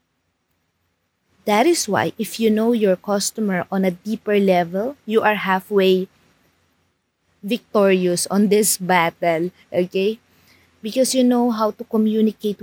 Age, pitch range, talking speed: 20-39, 190-225 Hz, 125 wpm